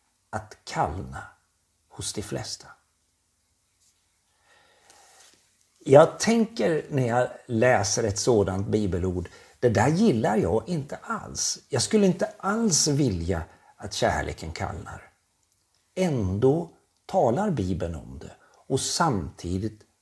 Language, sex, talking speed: Swedish, male, 100 wpm